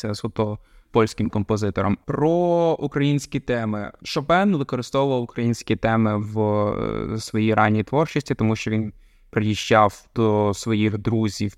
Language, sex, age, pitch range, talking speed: Ukrainian, male, 20-39, 105-125 Hz, 115 wpm